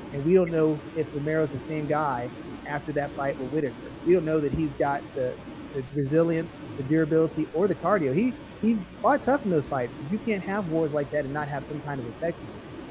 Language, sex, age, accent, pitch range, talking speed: English, male, 30-49, American, 145-165 Hz, 225 wpm